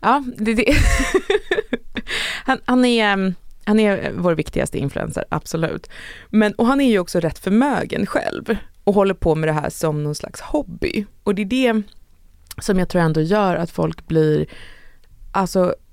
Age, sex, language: 20-39, female, Swedish